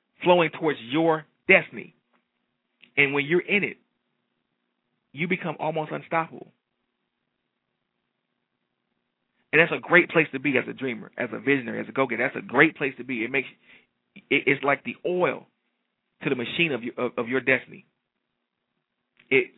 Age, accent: 40-59, American